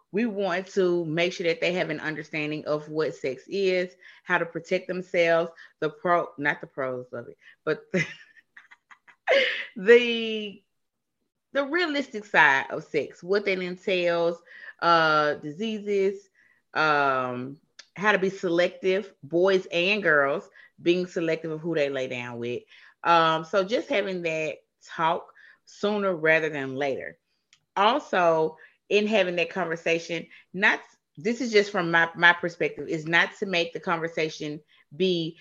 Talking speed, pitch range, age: 140 wpm, 160-205 Hz, 30-49